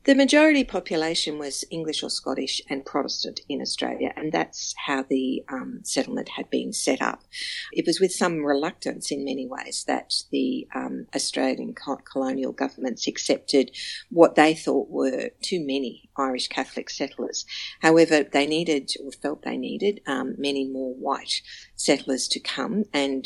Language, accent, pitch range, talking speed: English, Australian, 135-185 Hz, 155 wpm